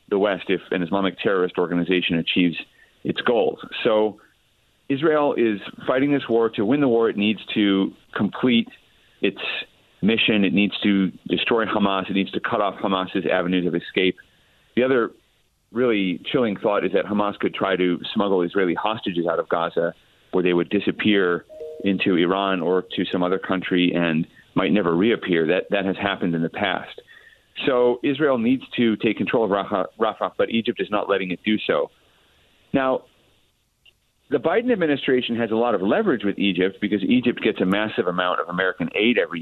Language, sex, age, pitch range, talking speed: English, male, 40-59, 90-115 Hz, 175 wpm